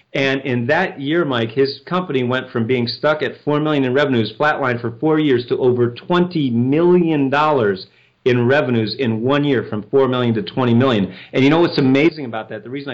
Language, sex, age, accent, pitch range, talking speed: English, male, 40-59, American, 125-155 Hz, 210 wpm